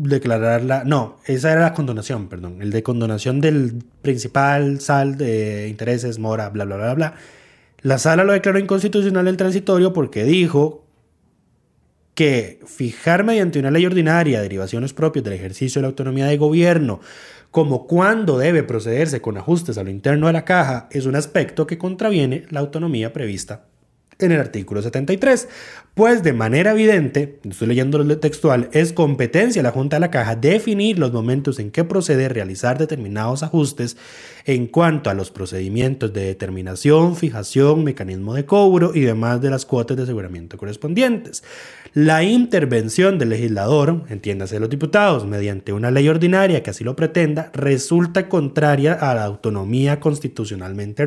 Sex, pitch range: male, 115-165 Hz